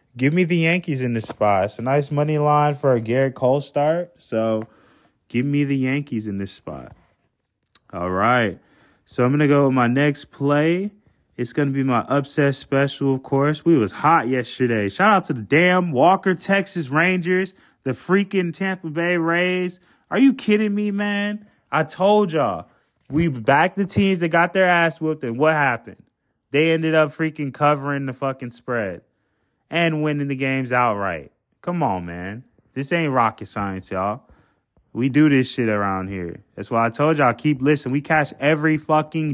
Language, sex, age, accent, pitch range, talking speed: English, male, 20-39, American, 125-175 Hz, 185 wpm